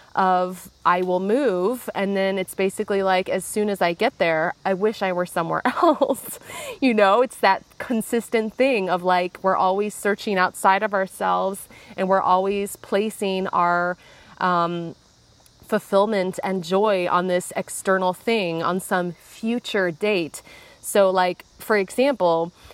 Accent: American